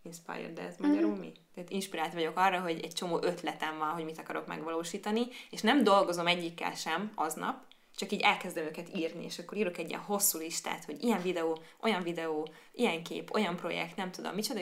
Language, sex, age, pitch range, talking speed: Hungarian, female, 20-39, 165-195 Hz, 195 wpm